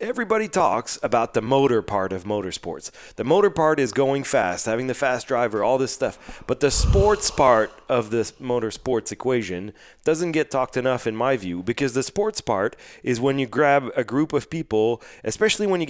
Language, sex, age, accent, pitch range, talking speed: English, male, 30-49, American, 115-145 Hz, 195 wpm